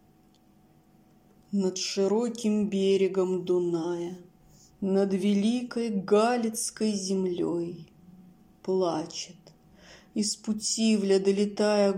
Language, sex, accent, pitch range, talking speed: Russian, female, native, 185-230 Hz, 60 wpm